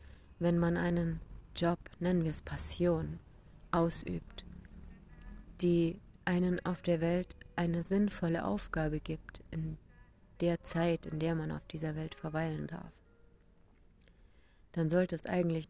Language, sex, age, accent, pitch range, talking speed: German, female, 30-49, German, 150-175 Hz, 125 wpm